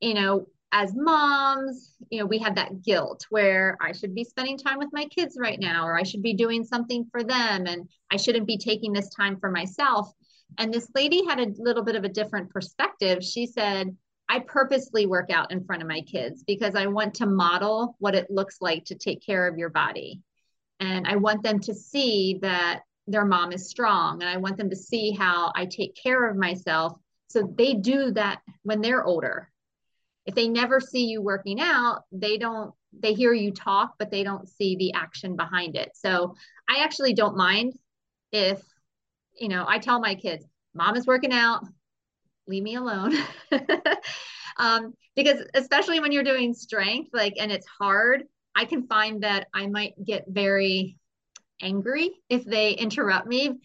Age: 40-59